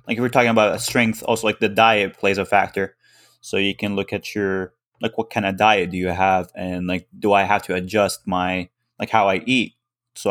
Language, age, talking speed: English, 20-39, 235 wpm